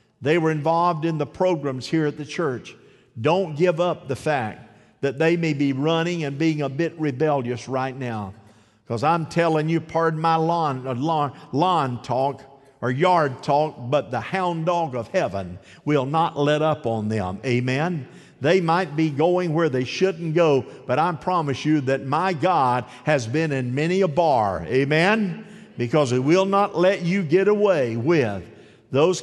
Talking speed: 170 wpm